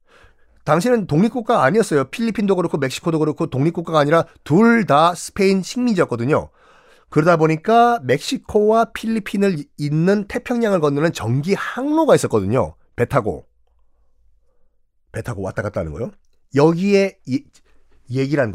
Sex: male